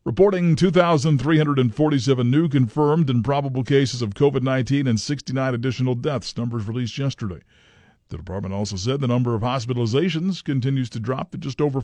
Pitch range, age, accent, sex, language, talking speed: 115-145 Hz, 50-69, American, male, English, 155 wpm